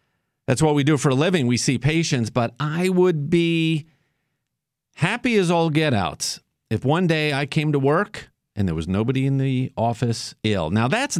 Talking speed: 195 wpm